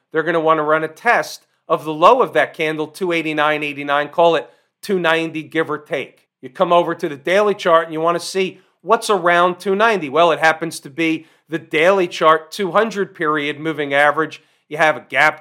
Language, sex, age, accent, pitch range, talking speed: English, male, 40-59, American, 150-175 Hz, 205 wpm